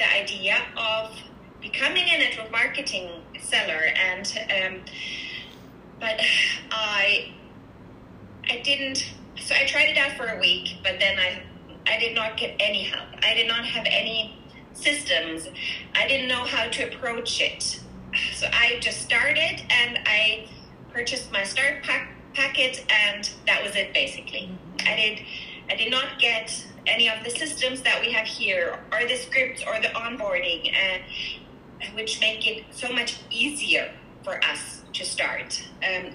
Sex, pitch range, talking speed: female, 195-260 Hz, 155 wpm